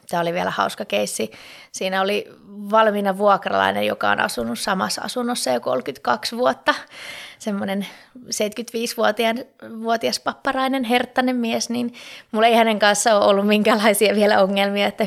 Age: 20-39